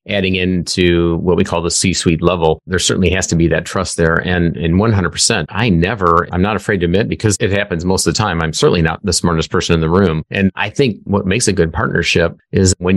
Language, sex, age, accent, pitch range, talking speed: English, male, 30-49, American, 85-100 Hz, 240 wpm